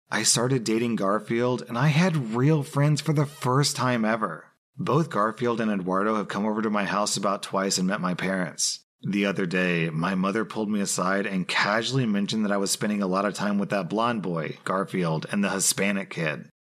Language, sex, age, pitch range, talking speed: English, male, 30-49, 100-140 Hz, 210 wpm